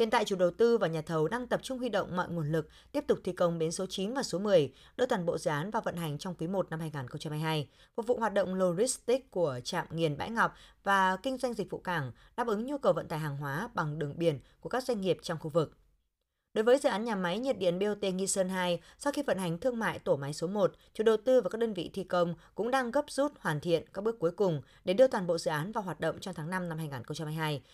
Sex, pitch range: female, 160-235 Hz